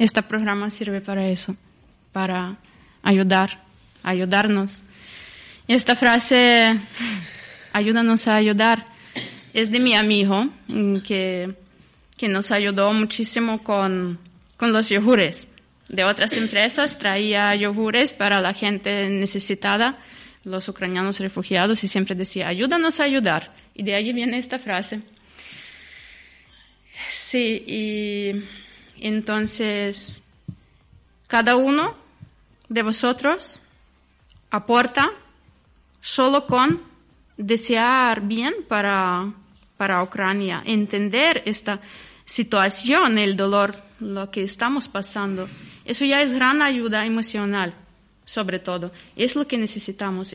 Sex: female